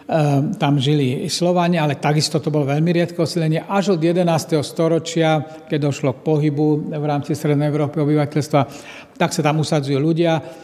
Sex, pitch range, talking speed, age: male, 140-160 Hz, 160 wpm, 60-79